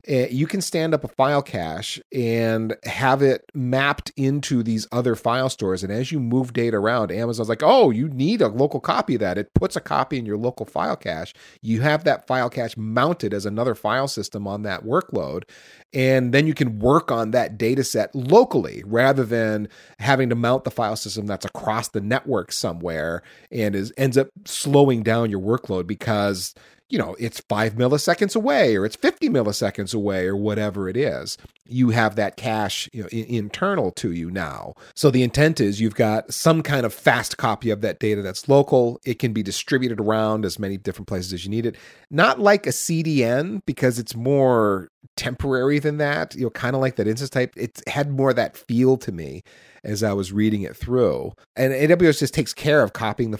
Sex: male